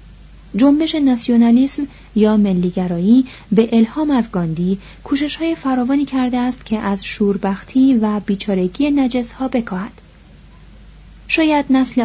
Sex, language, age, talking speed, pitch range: female, Persian, 30-49, 115 wpm, 190-250 Hz